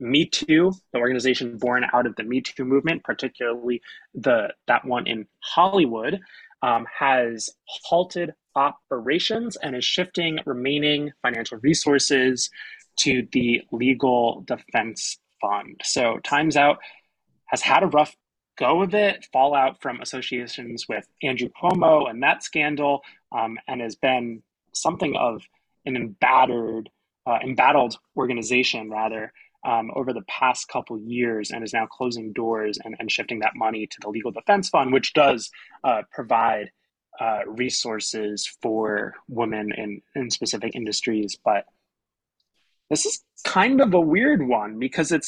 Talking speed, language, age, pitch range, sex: 140 wpm, English, 20-39, 115-155 Hz, male